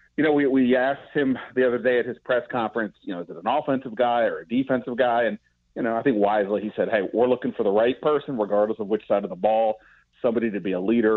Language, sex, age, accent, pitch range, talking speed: English, male, 30-49, American, 105-125 Hz, 275 wpm